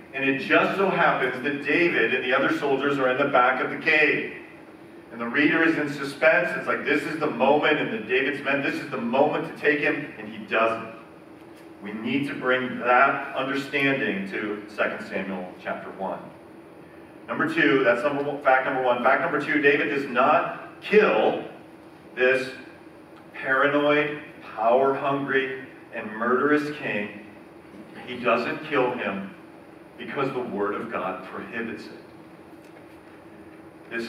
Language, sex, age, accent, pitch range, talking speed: English, male, 40-59, American, 115-140 Hz, 155 wpm